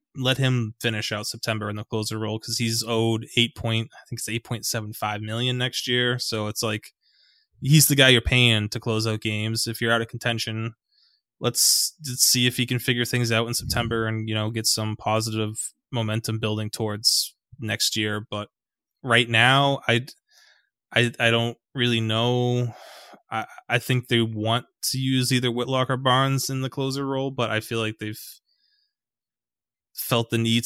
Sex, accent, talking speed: male, American, 185 wpm